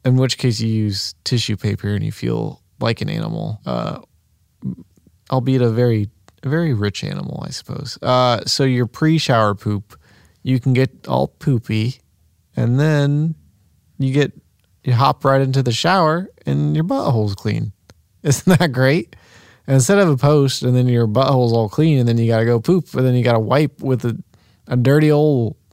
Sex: male